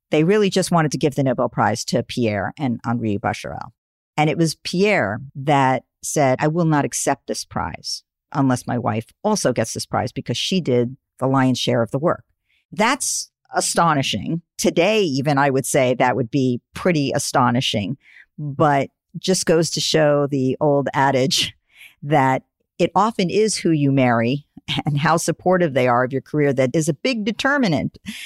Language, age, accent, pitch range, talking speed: English, 50-69, American, 130-170 Hz, 175 wpm